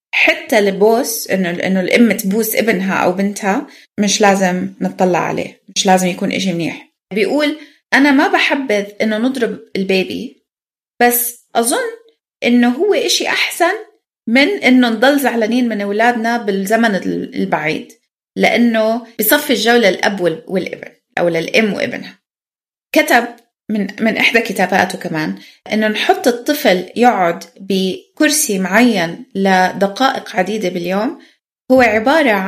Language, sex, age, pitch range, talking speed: Arabic, female, 20-39, 190-260 Hz, 120 wpm